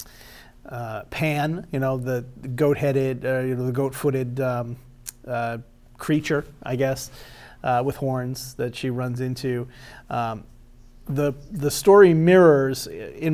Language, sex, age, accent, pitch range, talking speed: English, male, 40-59, American, 125-145 Hz, 130 wpm